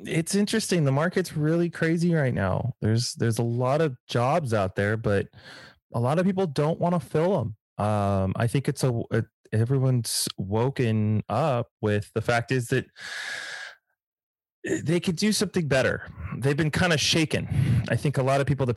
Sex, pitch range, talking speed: male, 105-135 Hz, 180 wpm